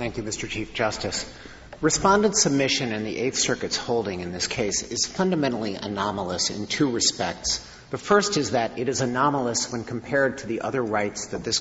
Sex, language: male, English